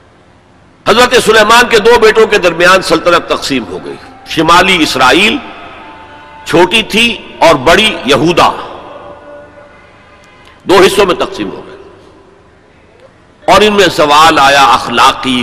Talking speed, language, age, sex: 115 wpm, Urdu, 60-79, male